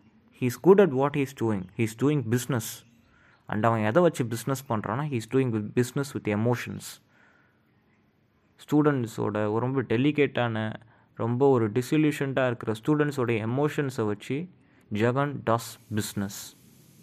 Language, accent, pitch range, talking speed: Tamil, native, 110-140 Hz, 145 wpm